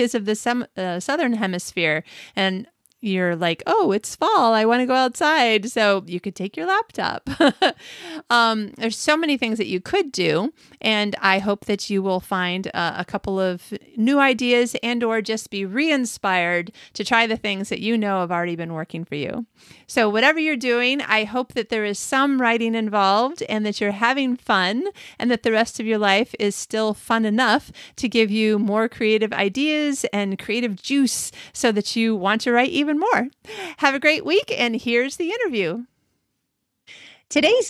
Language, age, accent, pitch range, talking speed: English, 30-49, American, 195-255 Hz, 185 wpm